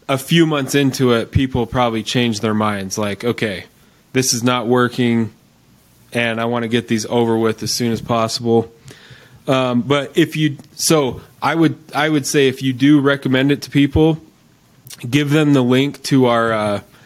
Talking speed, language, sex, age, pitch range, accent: 185 wpm, English, male, 20-39, 110-130 Hz, American